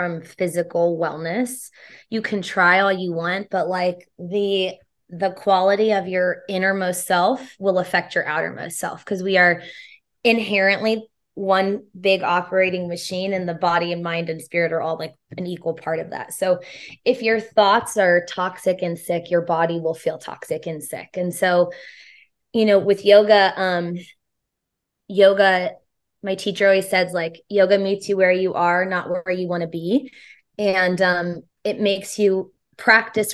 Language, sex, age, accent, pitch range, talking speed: English, female, 20-39, American, 175-195 Hz, 165 wpm